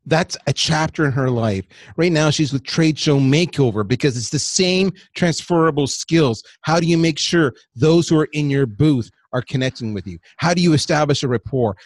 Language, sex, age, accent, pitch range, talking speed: English, male, 30-49, American, 115-155 Hz, 205 wpm